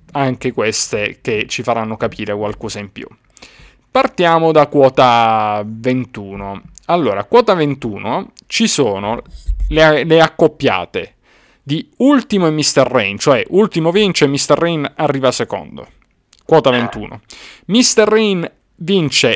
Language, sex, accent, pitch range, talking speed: Italian, male, native, 120-185 Hz, 120 wpm